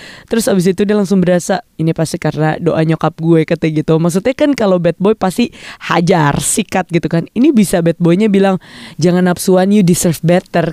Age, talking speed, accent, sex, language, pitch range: 20-39, 185 wpm, native, female, Indonesian, 160-195 Hz